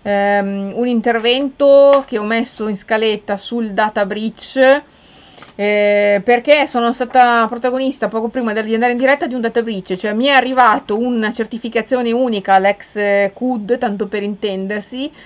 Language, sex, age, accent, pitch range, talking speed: Italian, female, 30-49, native, 200-255 Hz, 150 wpm